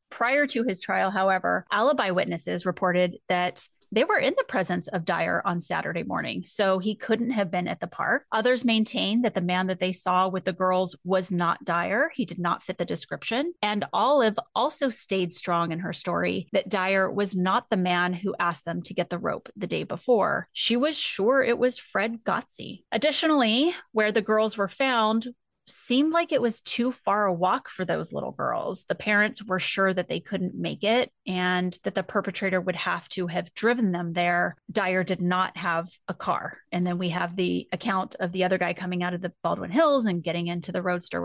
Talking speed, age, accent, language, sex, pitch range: 210 wpm, 30-49, American, English, female, 180-225 Hz